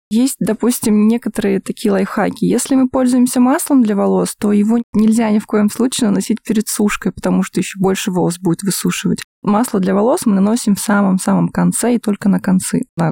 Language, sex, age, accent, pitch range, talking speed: Russian, female, 20-39, native, 195-230 Hz, 190 wpm